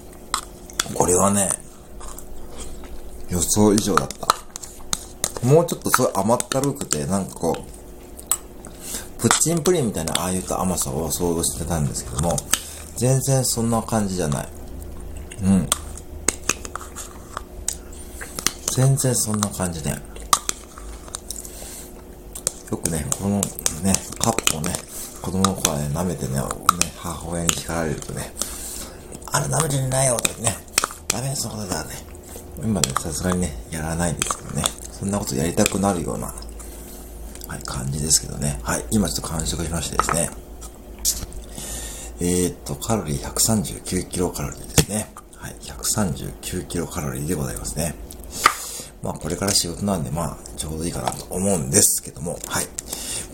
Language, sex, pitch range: Japanese, male, 70-100 Hz